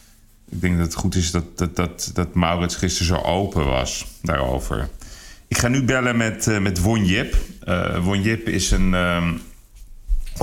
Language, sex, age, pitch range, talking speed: Dutch, male, 40-59, 85-100 Hz, 180 wpm